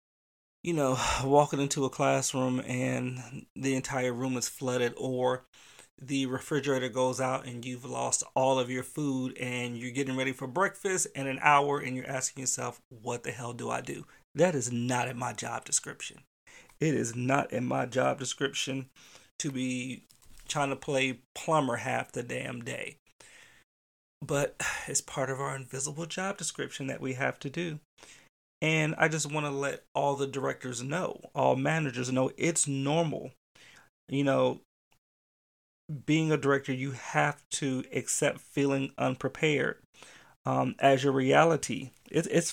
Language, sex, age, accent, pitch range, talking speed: English, male, 30-49, American, 130-145 Hz, 155 wpm